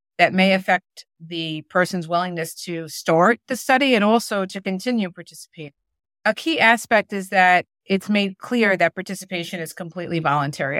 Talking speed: 155 wpm